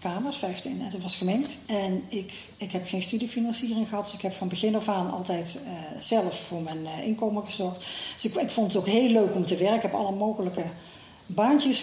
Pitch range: 180-220 Hz